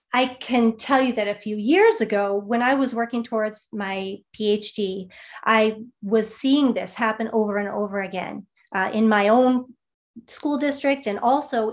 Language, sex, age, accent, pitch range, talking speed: English, female, 30-49, American, 205-245 Hz, 170 wpm